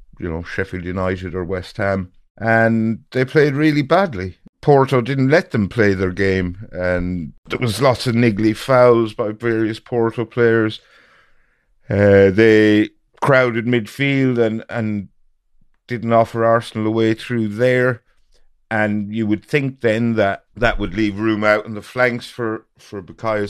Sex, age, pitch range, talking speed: male, 50-69, 95-115 Hz, 155 wpm